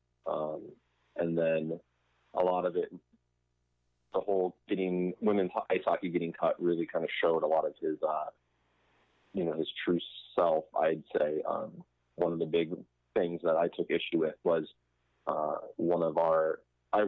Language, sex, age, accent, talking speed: English, male, 30-49, American, 170 wpm